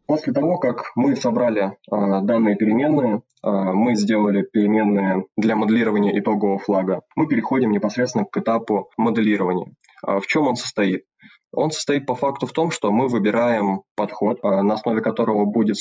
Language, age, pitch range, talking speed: Russian, 20-39, 100-110 Hz, 145 wpm